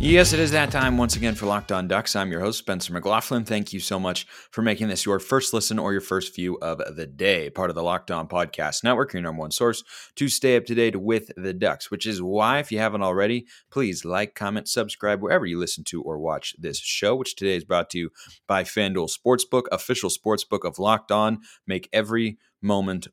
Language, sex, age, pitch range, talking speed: English, male, 30-49, 95-115 Hz, 230 wpm